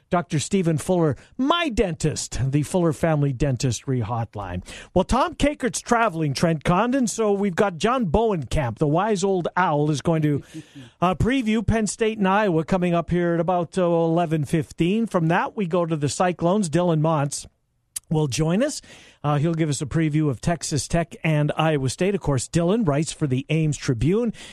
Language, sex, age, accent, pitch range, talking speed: English, male, 50-69, American, 150-190 Hz, 180 wpm